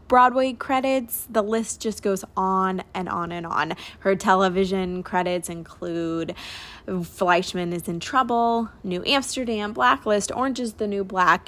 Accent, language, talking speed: American, English, 140 wpm